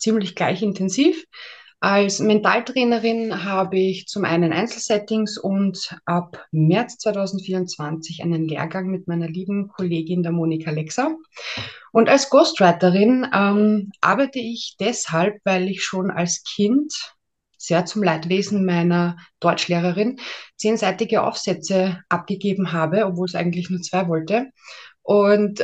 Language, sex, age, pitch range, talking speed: German, female, 20-39, 180-220 Hz, 120 wpm